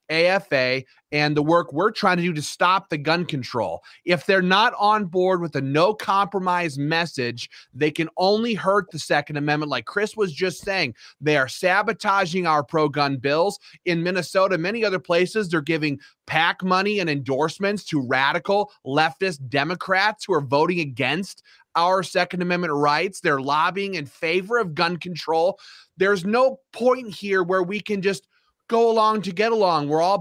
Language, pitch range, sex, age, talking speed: English, 145-195 Hz, male, 30-49, 170 wpm